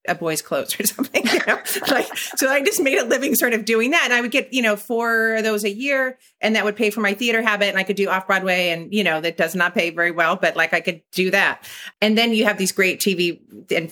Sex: female